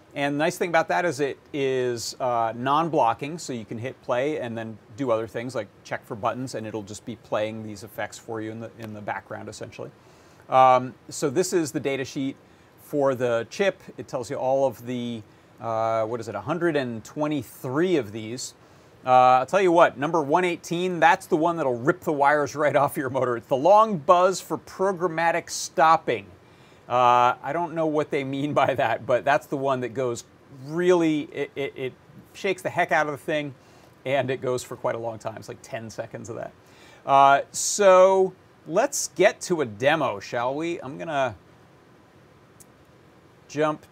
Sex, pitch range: male, 120-160 Hz